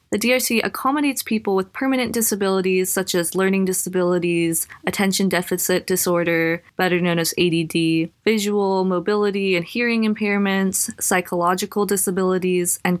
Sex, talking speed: female, 120 wpm